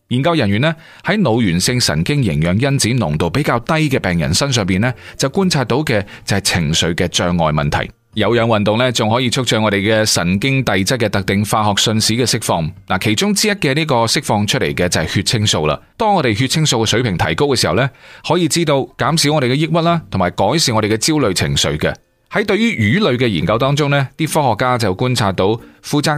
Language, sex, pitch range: Chinese, male, 100-140 Hz